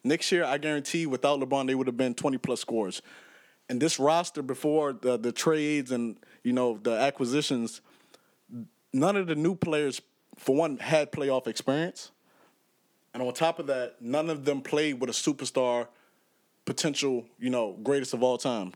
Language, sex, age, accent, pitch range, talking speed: English, male, 20-39, American, 130-160 Hz, 170 wpm